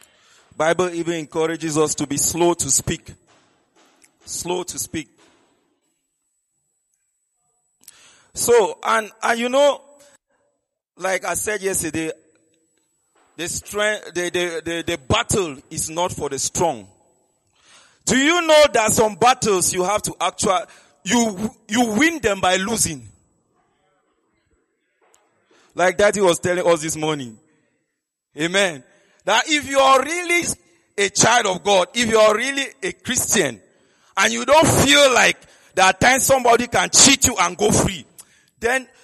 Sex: male